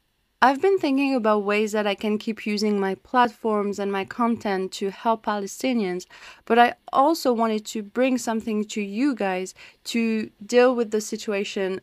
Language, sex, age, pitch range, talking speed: English, female, 20-39, 205-255 Hz, 165 wpm